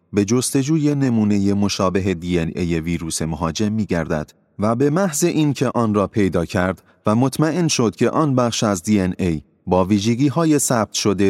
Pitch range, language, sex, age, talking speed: 95-130 Hz, Persian, male, 30-49, 160 wpm